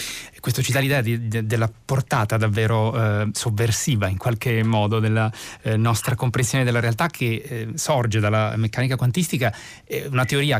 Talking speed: 160 wpm